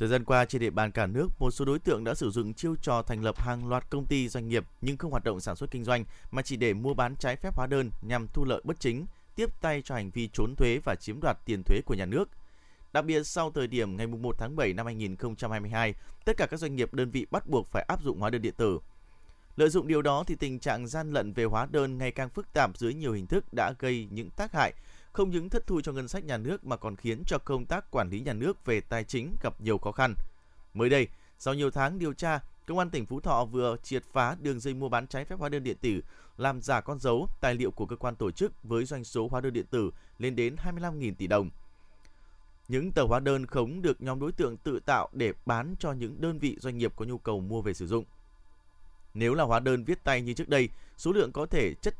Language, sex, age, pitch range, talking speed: Vietnamese, male, 20-39, 110-140 Hz, 265 wpm